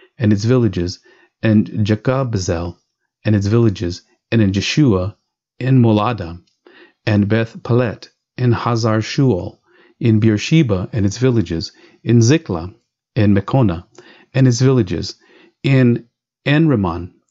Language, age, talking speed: English, 40-59, 115 wpm